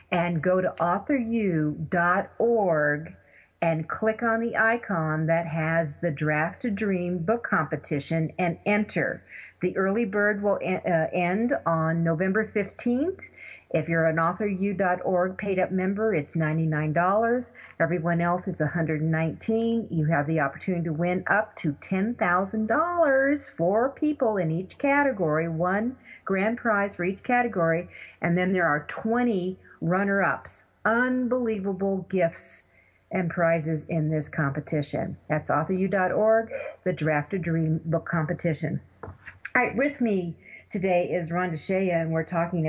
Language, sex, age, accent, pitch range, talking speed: English, female, 40-59, American, 165-210 Hz, 130 wpm